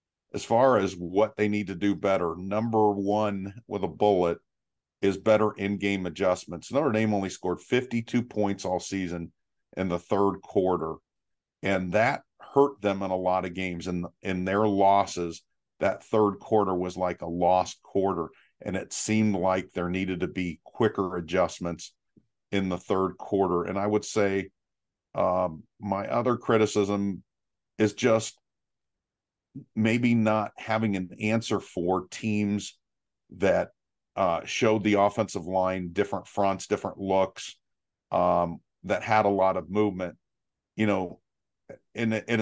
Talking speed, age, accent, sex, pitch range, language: 145 wpm, 50-69, American, male, 90-105 Hz, English